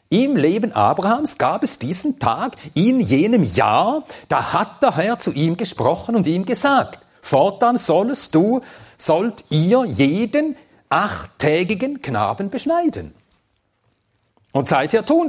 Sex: male